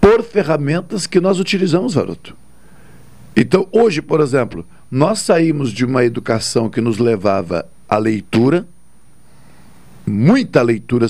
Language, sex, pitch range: Portuguese, male, 130-180 Hz